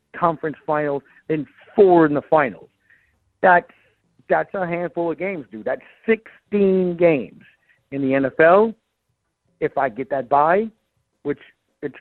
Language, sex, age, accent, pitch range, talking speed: English, male, 50-69, American, 140-170 Hz, 135 wpm